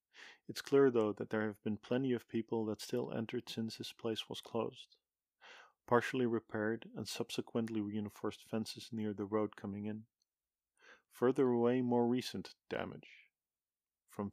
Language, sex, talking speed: English, male, 145 wpm